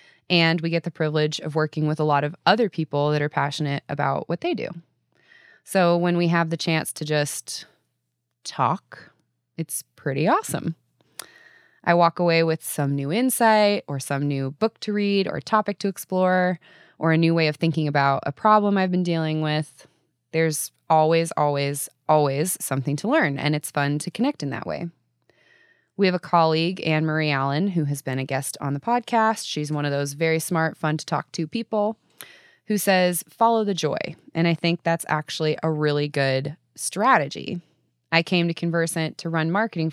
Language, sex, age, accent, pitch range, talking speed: English, female, 20-39, American, 145-185 Hz, 180 wpm